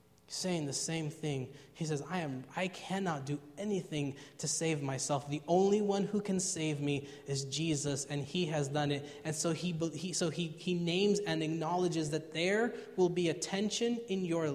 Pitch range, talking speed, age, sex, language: 135-170 Hz, 195 wpm, 20-39, male, English